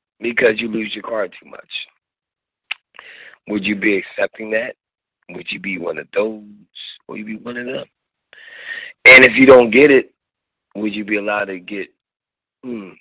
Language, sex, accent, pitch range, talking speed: English, male, American, 110-180 Hz, 175 wpm